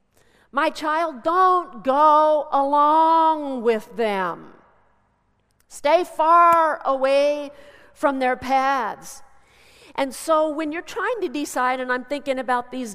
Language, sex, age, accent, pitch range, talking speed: English, female, 50-69, American, 245-325 Hz, 115 wpm